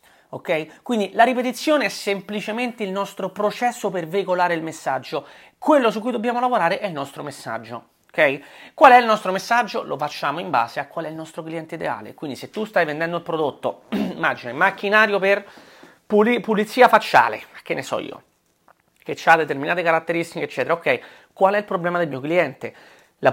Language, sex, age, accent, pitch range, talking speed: Italian, male, 30-49, native, 140-200 Hz, 185 wpm